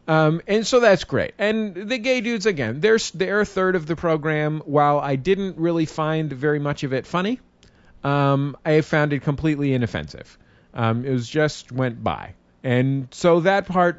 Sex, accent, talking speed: male, American, 180 wpm